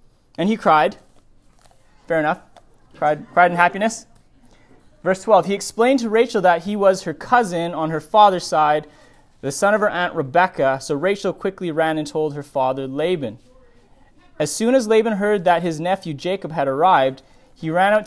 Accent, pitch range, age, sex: American, 140-190 Hz, 30-49, male